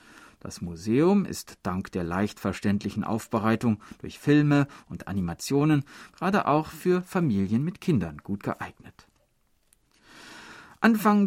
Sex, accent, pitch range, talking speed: male, German, 100-135 Hz, 110 wpm